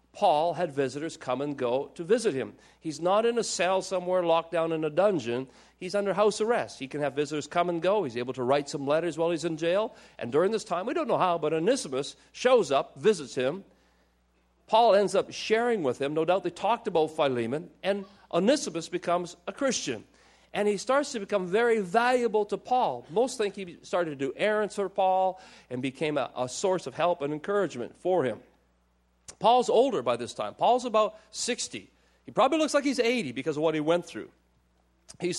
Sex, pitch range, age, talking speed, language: male, 145-205 Hz, 50-69, 205 wpm, English